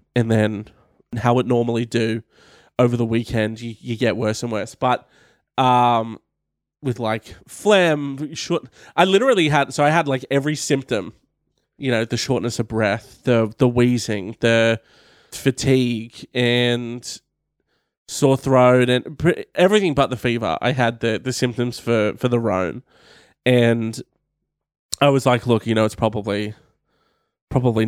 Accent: Australian